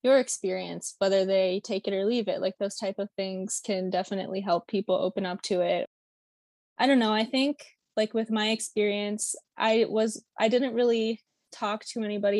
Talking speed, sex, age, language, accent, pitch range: 190 wpm, female, 20-39, English, American, 195-220 Hz